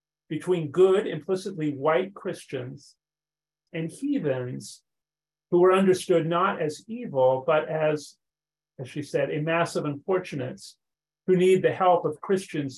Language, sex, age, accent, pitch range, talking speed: English, male, 40-59, American, 150-185 Hz, 130 wpm